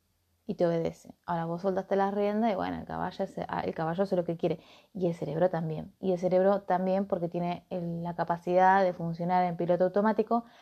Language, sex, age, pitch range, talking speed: Spanish, female, 20-39, 180-215 Hz, 205 wpm